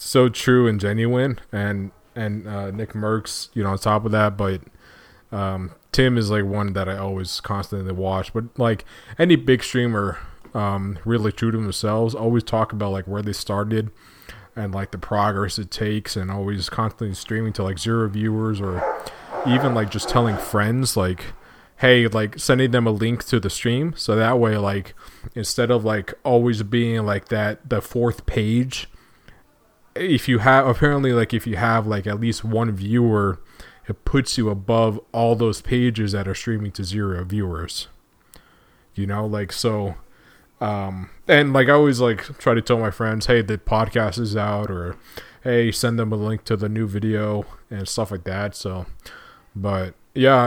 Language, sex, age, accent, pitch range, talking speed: English, male, 20-39, American, 100-115 Hz, 180 wpm